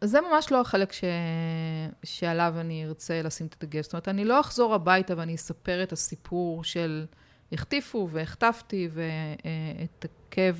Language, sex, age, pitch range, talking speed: Hebrew, female, 30-49, 160-195 Hz, 155 wpm